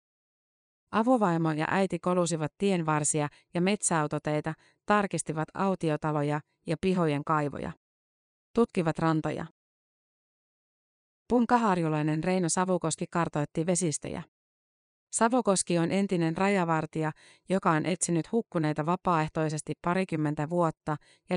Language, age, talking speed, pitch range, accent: Finnish, 30-49, 85 wpm, 155-185 Hz, native